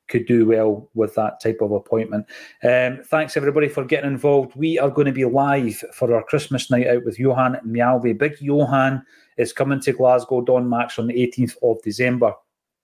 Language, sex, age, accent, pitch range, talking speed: English, male, 30-49, British, 115-135 Hz, 190 wpm